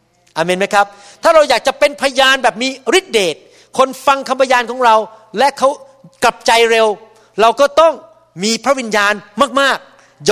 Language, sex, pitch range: Thai, male, 190-265 Hz